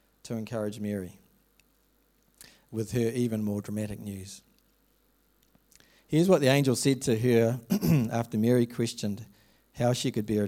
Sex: male